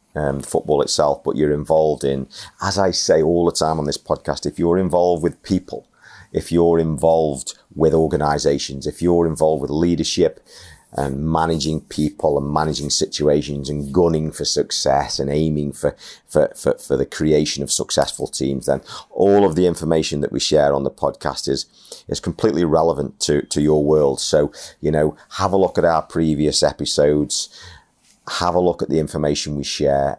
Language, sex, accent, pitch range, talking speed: English, male, British, 70-85 Hz, 175 wpm